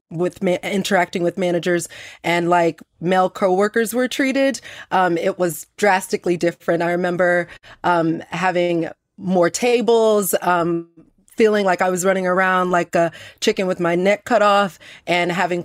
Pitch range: 170-190 Hz